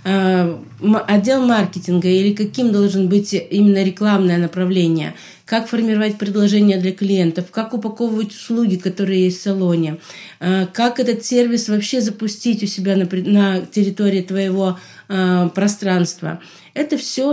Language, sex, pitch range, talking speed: Russian, female, 185-225 Hz, 120 wpm